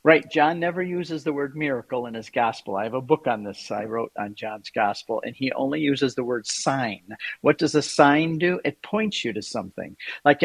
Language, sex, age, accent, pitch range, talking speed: English, male, 50-69, American, 125-155 Hz, 225 wpm